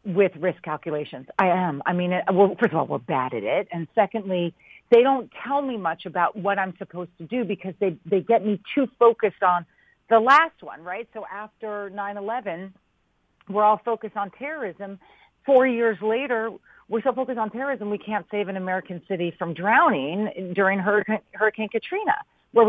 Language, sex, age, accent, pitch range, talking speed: English, female, 40-59, American, 175-230 Hz, 190 wpm